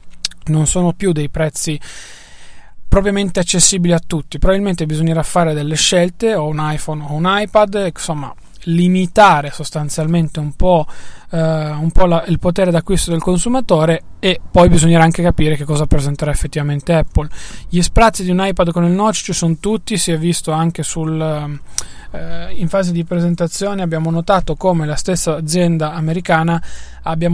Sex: male